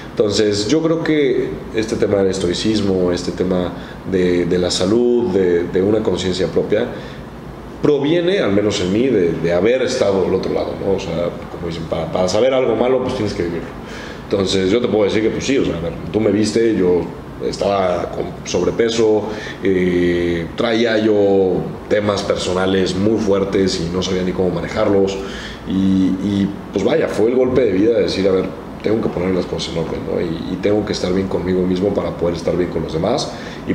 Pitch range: 90-105 Hz